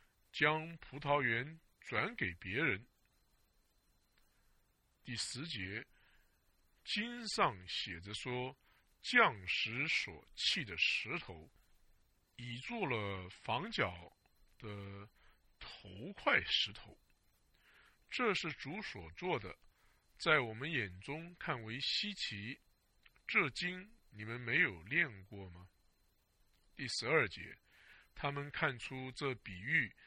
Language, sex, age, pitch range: English, male, 50-69, 90-140 Hz